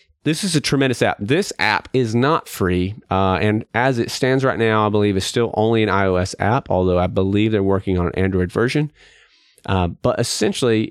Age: 30-49